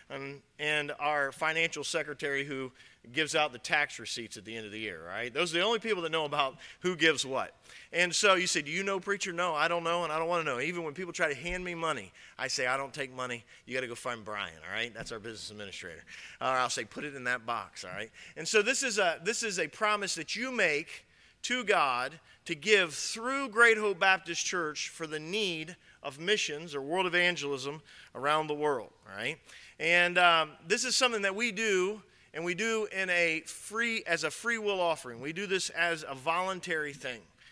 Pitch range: 145-190 Hz